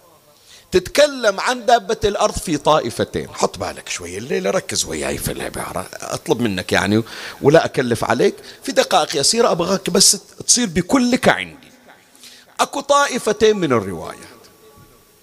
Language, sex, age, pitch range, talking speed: Arabic, male, 50-69, 145-235 Hz, 125 wpm